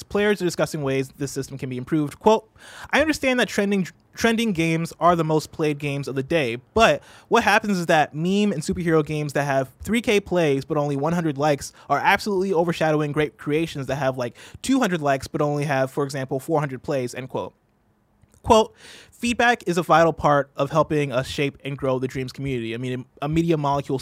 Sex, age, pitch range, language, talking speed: male, 20-39, 135-175 Hz, English, 200 wpm